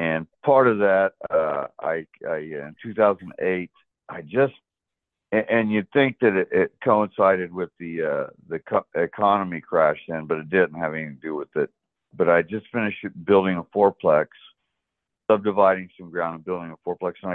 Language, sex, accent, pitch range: English, male, American, 80-105 Hz